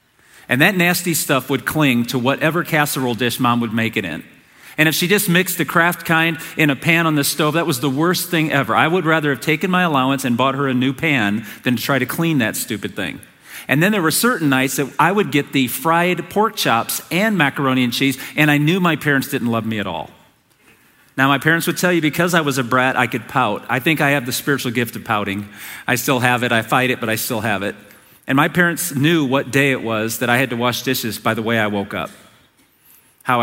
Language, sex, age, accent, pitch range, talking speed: English, male, 40-59, American, 120-155 Hz, 250 wpm